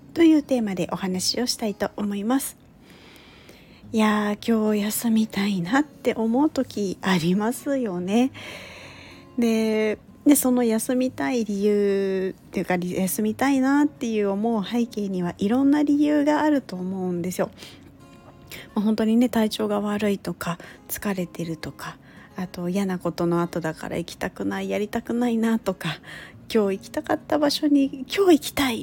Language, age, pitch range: Japanese, 40-59, 185-265 Hz